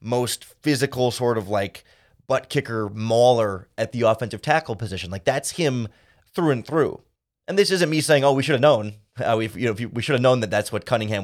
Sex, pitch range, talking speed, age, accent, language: male, 110-140 Hz, 230 wpm, 30-49, American, English